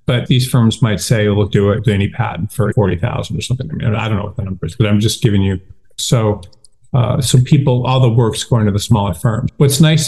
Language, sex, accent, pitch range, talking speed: English, male, American, 115-140 Hz, 250 wpm